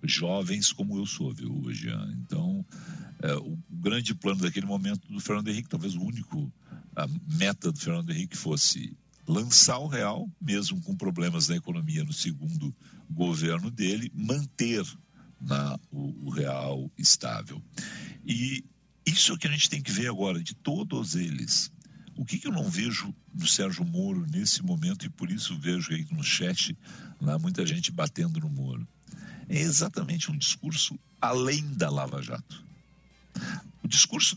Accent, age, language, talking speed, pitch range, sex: Brazilian, 60-79, Portuguese, 160 wpm, 140-180 Hz, male